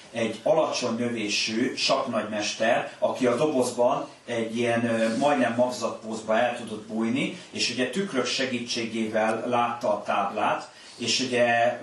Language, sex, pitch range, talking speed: Hungarian, male, 110-125 Hz, 115 wpm